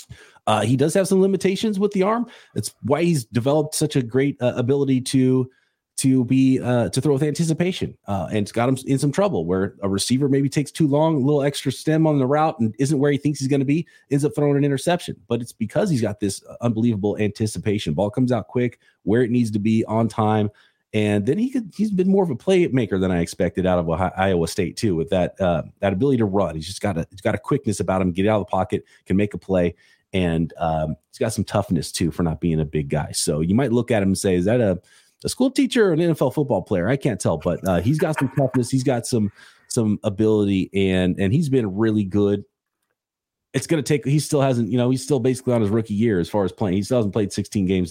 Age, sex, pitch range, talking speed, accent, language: 30-49, male, 95-135 Hz, 255 wpm, American, English